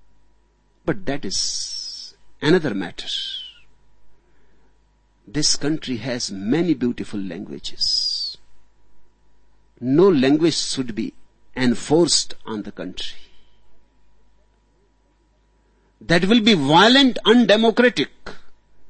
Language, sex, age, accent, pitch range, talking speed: Hindi, male, 60-79, native, 135-210 Hz, 75 wpm